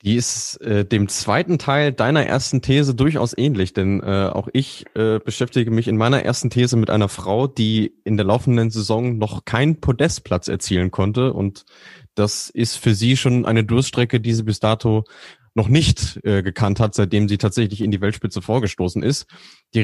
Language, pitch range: German, 105-130 Hz